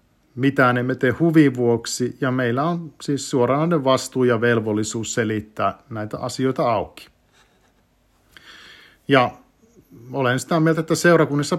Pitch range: 120-150 Hz